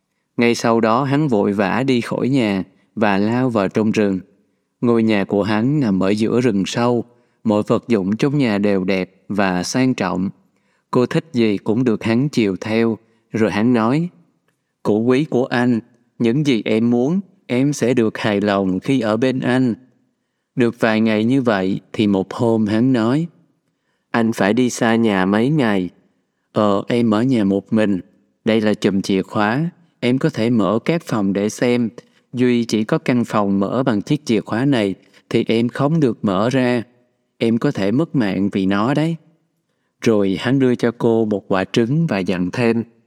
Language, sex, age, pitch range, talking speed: Vietnamese, male, 20-39, 105-130 Hz, 185 wpm